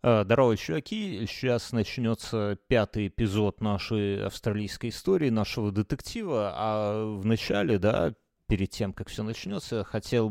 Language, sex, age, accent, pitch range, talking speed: Russian, male, 30-49, native, 100-120 Hz, 120 wpm